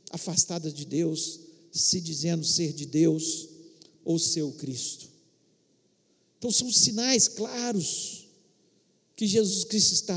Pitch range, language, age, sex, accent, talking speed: 175-265 Hz, Portuguese, 50-69, male, Brazilian, 110 wpm